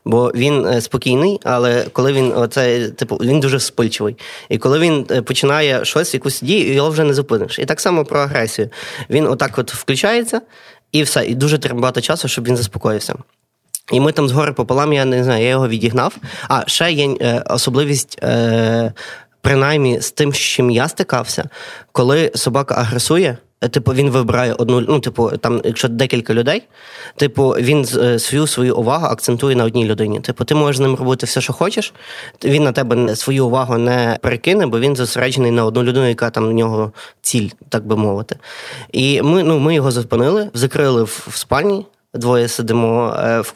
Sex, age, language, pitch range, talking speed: male, 20-39, Ukrainian, 120-145 Hz, 175 wpm